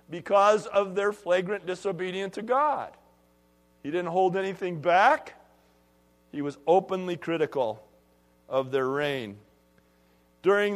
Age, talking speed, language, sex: 50-69, 110 wpm, English, male